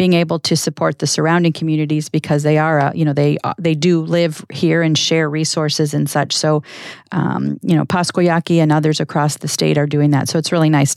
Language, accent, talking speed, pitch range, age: English, American, 220 wpm, 155-180 Hz, 40-59